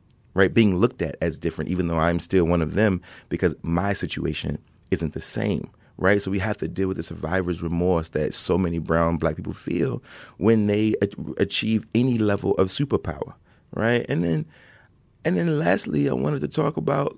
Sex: male